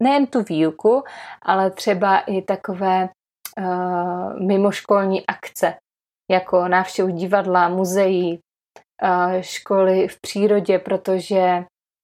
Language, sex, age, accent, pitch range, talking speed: Czech, female, 30-49, native, 185-200 Hz, 95 wpm